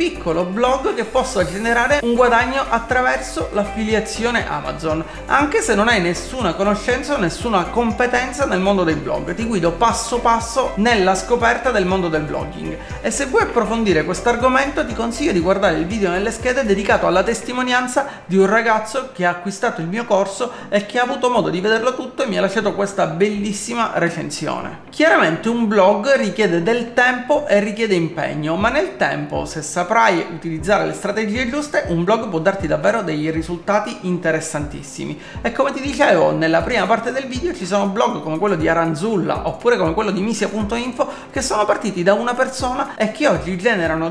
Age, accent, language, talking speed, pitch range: 30-49, native, Italian, 180 wpm, 190-250 Hz